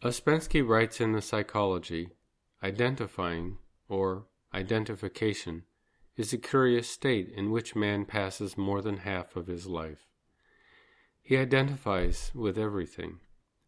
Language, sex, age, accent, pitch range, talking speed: English, male, 50-69, American, 90-110 Hz, 115 wpm